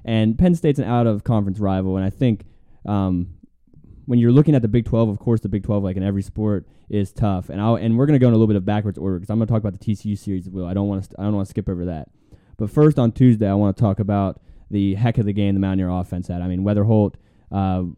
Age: 10-29